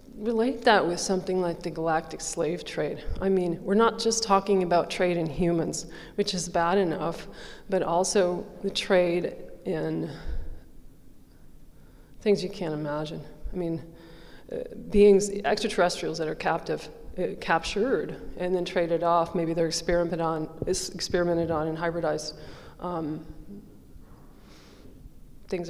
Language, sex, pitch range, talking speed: English, female, 165-195 Hz, 140 wpm